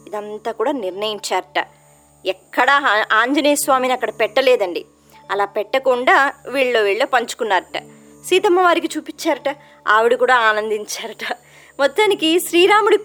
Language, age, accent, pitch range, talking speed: Telugu, 20-39, native, 220-330 Hz, 85 wpm